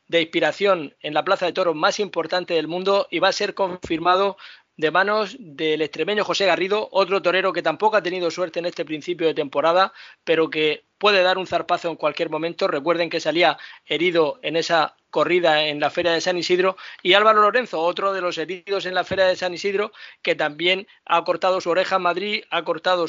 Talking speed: 205 wpm